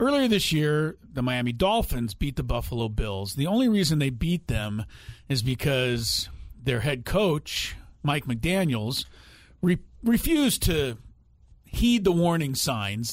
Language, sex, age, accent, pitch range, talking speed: English, male, 40-59, American, 115-155 Hz, 135 wpm